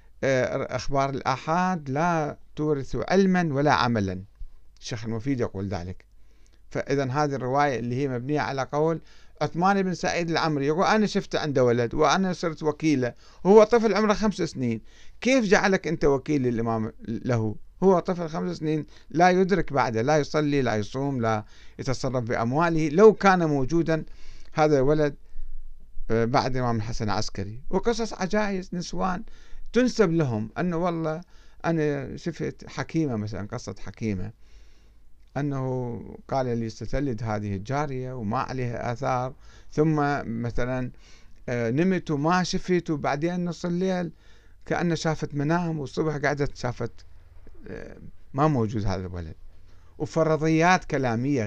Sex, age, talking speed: male, 50-69, 125 wpm